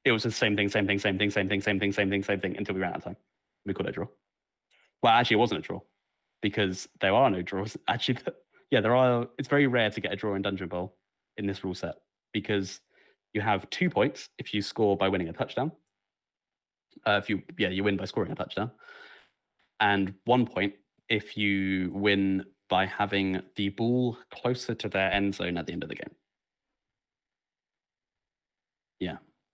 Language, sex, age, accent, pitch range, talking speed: English, male, 20-39, British, 95-110 Hz, 210 wpm